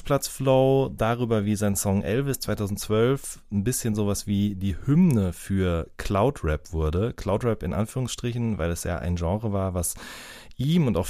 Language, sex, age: German, male, 30-49